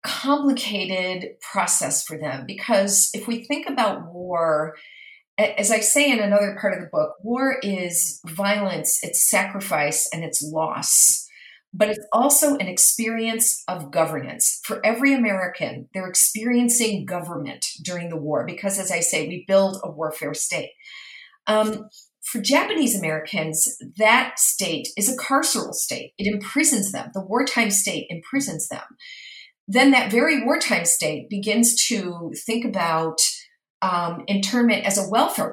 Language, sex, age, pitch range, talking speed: English, female, 40-59, 185-250 Hz, 140 wpm